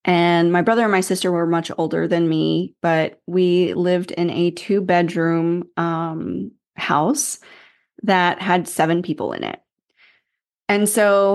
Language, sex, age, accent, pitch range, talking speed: English, female, 20-39, American, 165-195 Hz, 135 wpm